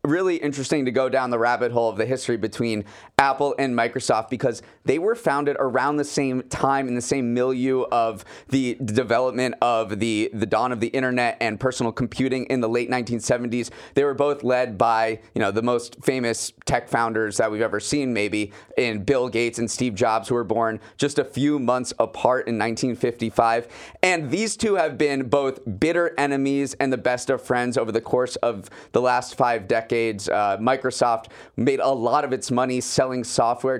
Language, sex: English, male